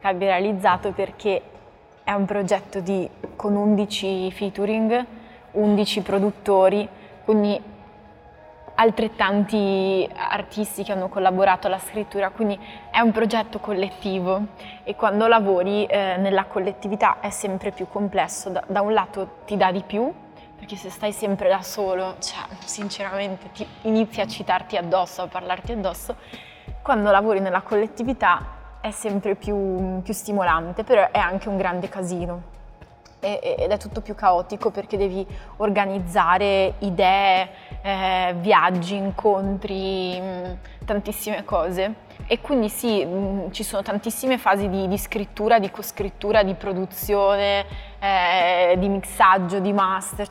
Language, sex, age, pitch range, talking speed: Italian, female, 20-39, 190-210 Hz, 130 wpm